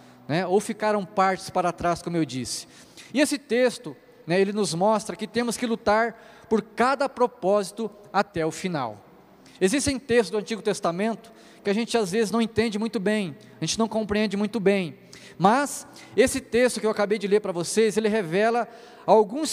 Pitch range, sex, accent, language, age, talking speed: 195-235 Hz, male, Brazilian, Portuguese, 20-39, 180 wpm